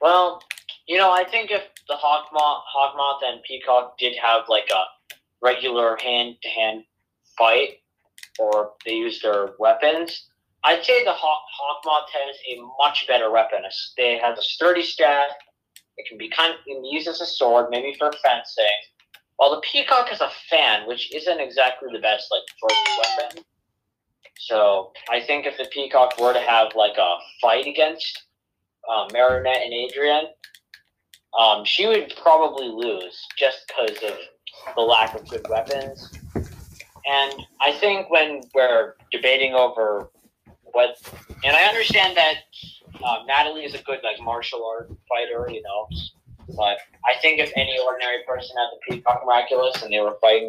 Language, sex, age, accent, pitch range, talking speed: English, male, 20-39, American, 115-150 Hz, 165 wpm